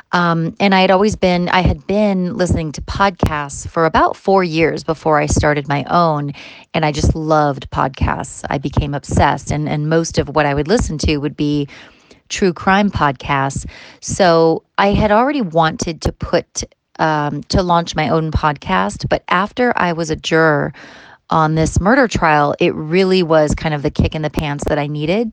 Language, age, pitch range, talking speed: Hebrew, 30-49, 145-170 Hz, 185 wpm